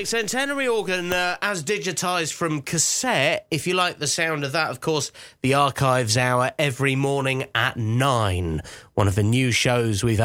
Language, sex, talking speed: English, male, 170 wpm